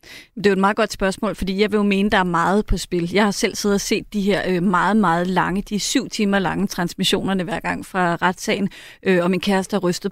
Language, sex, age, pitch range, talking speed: Danish, female, 30-49, 185-215 Hz, 265 wpm